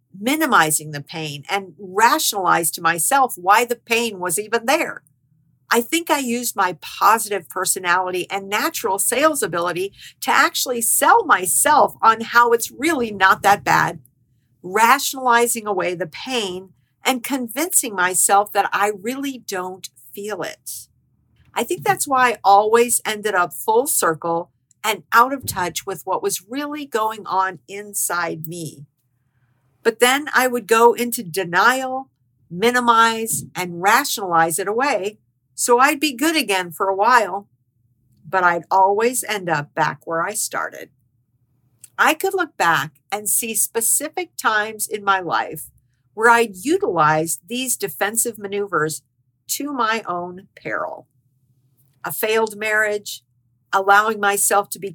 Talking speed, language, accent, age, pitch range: 140 wpm, English, American, 50-69, 160-235 Hz